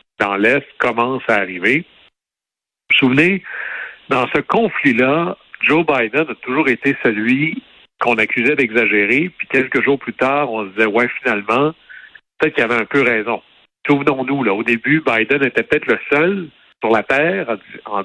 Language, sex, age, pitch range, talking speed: French, male, 60-79, 110-140 Hz, 165 wpm